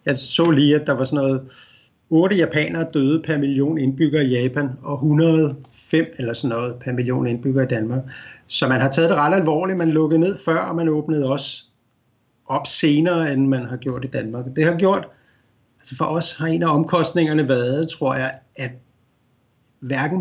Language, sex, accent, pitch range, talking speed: Danish, male, native, 130-155 Hz, 190 wpm